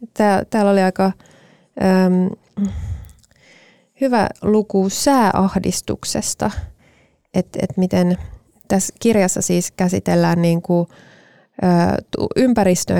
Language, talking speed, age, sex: Finnish, 60 wpm, 20-39, female